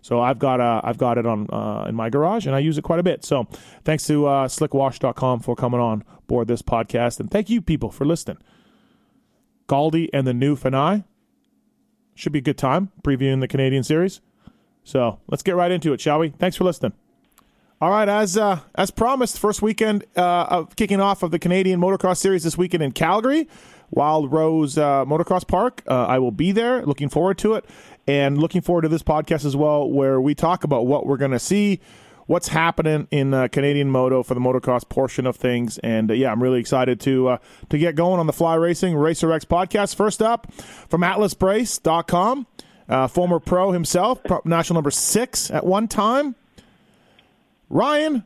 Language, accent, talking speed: English, American, 200 wpm